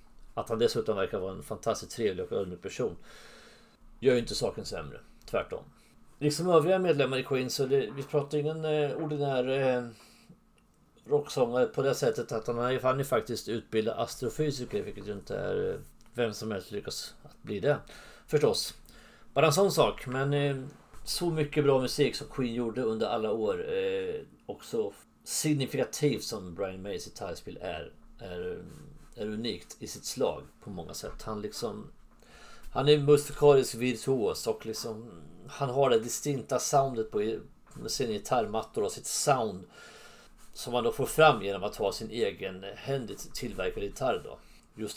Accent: Swedish